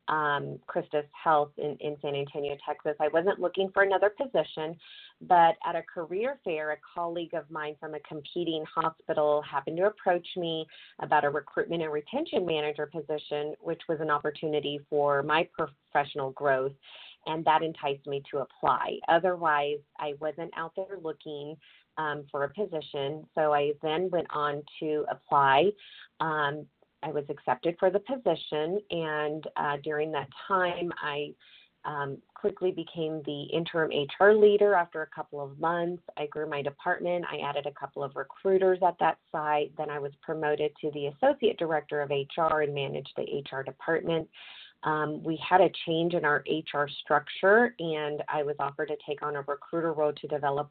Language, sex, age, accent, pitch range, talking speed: English, female, 30-49, American, 145-170 Hz, 170 wpm